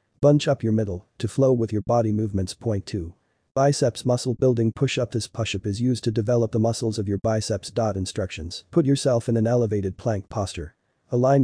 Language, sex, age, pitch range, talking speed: English, male, 40-59, 105-125 Hz, 200 wpm